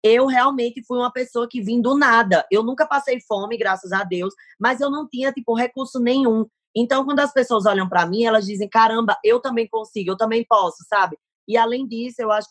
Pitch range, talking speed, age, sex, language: 210-245 Hz, 215 wpm, 20-39, female, Portuguese